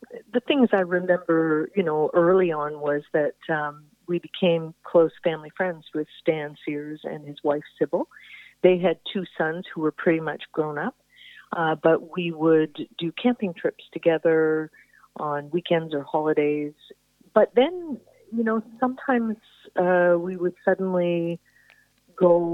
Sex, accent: female, American